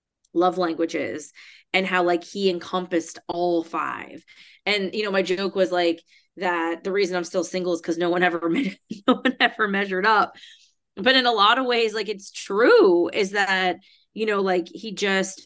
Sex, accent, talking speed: female, American, 190 wpm